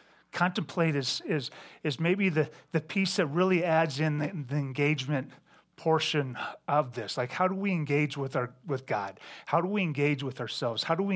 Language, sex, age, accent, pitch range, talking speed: English, male, 30-49, American, 135-165 Hz, 195 wpm